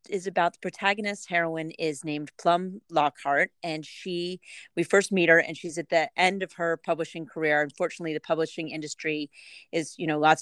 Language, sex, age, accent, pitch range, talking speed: English, female, 30-49, American, 150-165 Hz, 185 wpm